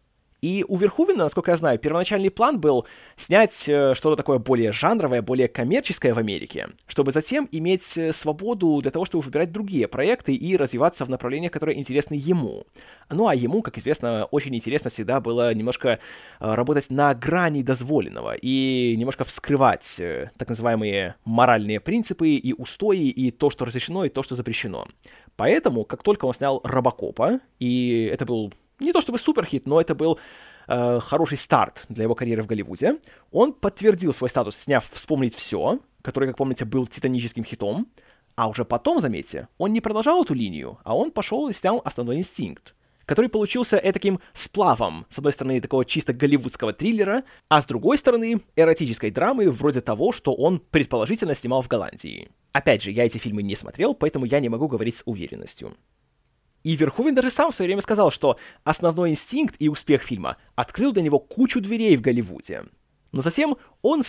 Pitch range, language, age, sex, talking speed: 125-185 Hz, Russian, 20-39, male, 170 wpm